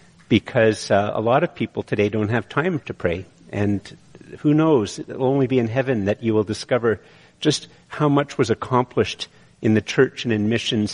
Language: English